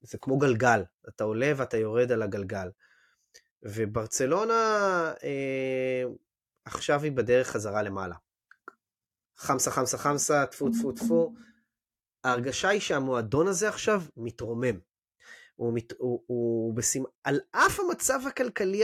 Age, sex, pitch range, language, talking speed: 20-39, male, 115-150 Hz, Hebrew, 120 wpm